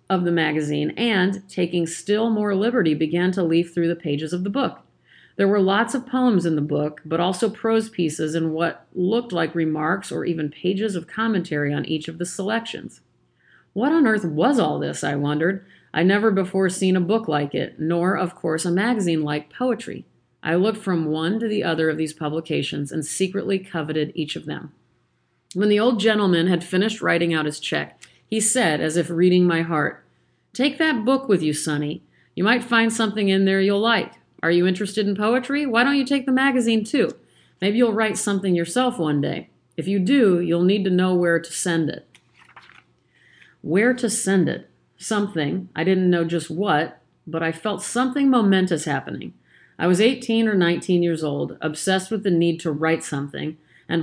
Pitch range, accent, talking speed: 160-215 Hz, American, 195 wpm